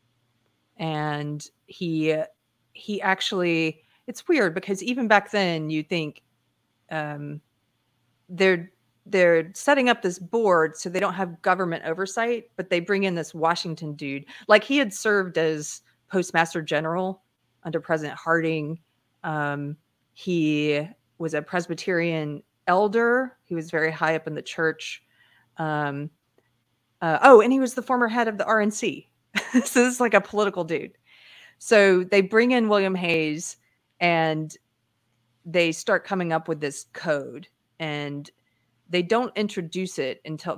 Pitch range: 150-195 Hz